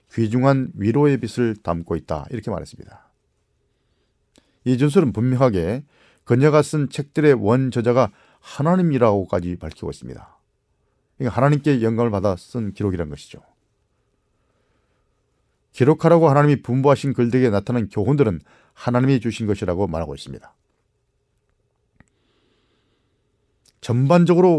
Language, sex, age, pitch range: Korean, male, 40-59, 105-135 Hz